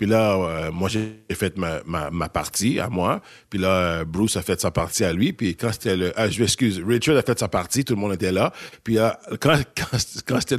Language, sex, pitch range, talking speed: French, male, 95-130 Hz, 250 wpm